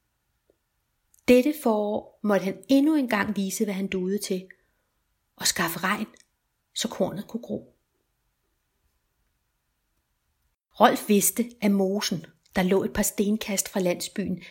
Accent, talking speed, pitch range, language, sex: native, 120 wpm, 190-250 Hz, Danish, female